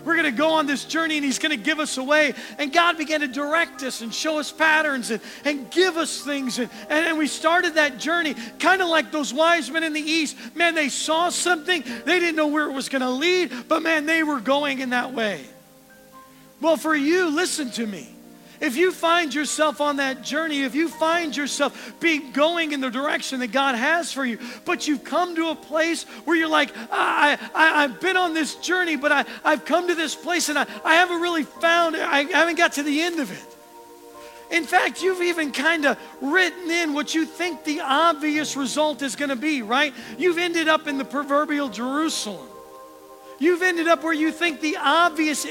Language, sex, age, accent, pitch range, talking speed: English, male, 40-59, American, 270-330 Hz, 205 wpm